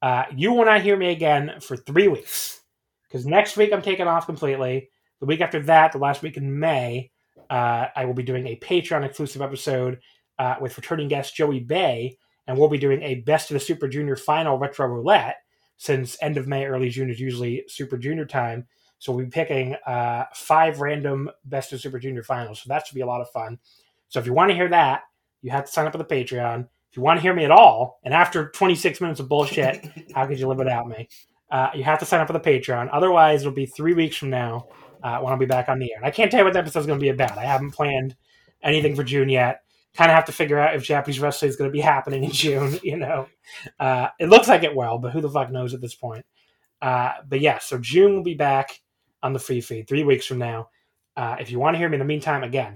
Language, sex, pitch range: English, male, 130-155 Hz